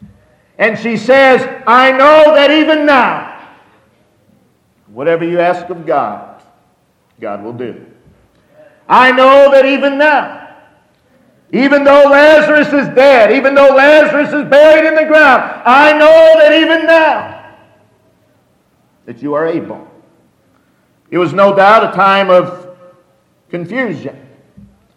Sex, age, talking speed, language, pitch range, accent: male, 50-69, 125 wpm, English, 165-270 Hz, American